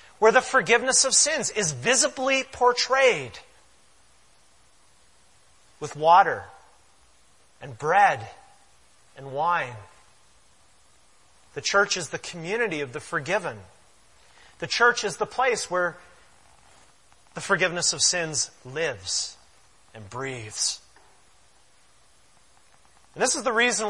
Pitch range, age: 165-230 Hz, 30-49